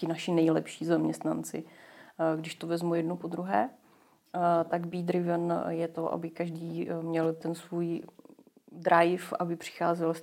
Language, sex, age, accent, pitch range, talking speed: Czech, female, 30-49, native, 165-175 Hz, 135 wpm